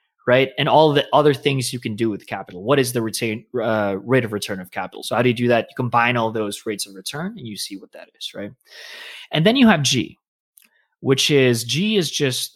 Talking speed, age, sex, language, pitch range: 250 wpm, 20-39, male, English, 110-150 Hz